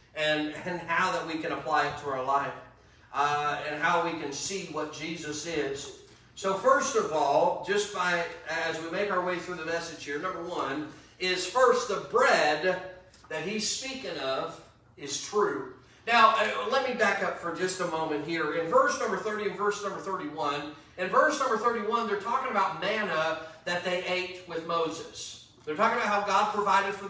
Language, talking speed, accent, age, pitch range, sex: English, 190 wpm, American, 40-59, 165-220 Hz, male